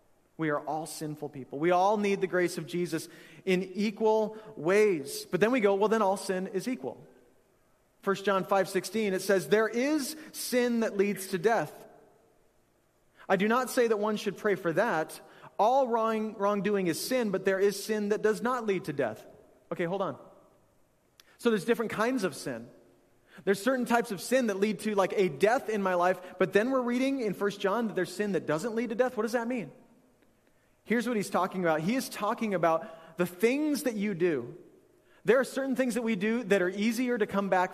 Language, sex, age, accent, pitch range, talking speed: English, male, 30-49, American, 180-225 Hz, 210 wpm